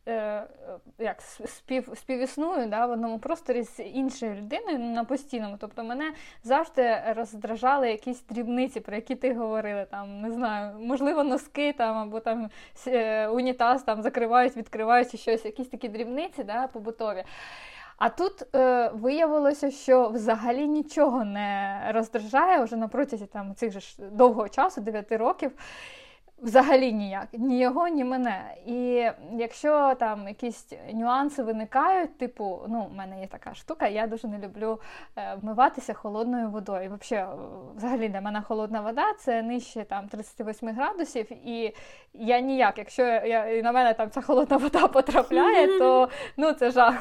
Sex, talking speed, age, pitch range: female, 140 wpm, 20-39, 220-265 Hz